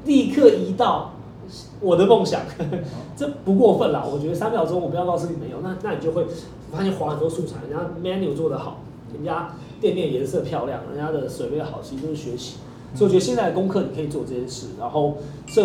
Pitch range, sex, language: 140-175 Hz, male, Chinese